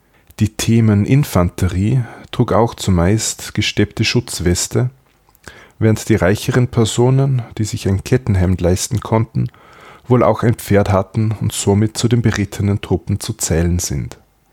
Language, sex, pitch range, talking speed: German, male, 95-115 Hz, 130 wpm